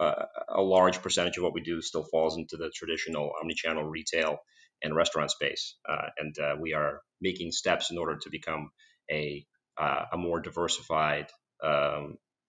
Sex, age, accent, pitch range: male, 30-49, American, 80-105 Hz